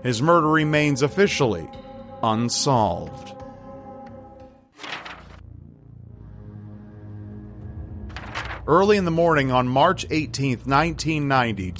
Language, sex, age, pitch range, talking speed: English, male, 40-59, 115-160 Hz, 65 wpm